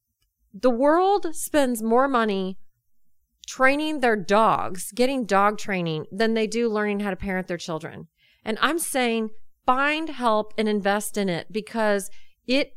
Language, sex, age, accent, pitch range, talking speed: English, female, 30-49, American, 195-230 Hz, 145 wpm